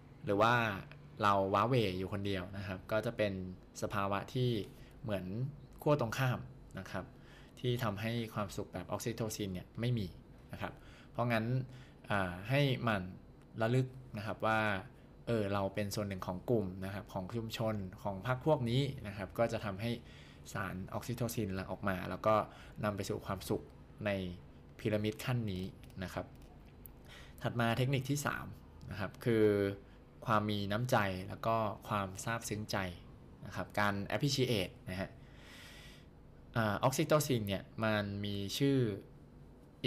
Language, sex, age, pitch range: Thai, male, 20-39, 100-120 Hz